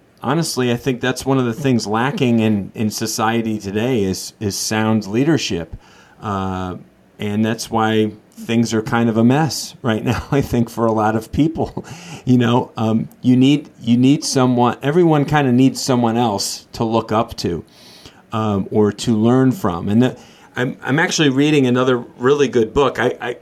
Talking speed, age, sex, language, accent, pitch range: 180 wpm, 40-59, male, English, American, 110-135 Hz